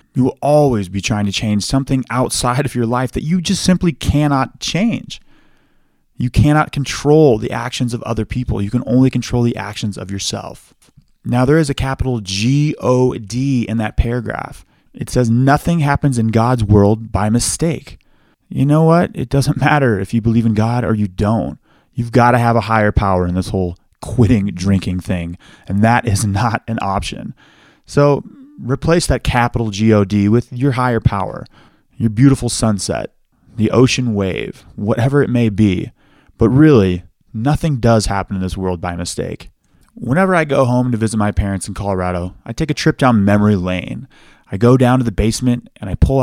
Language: English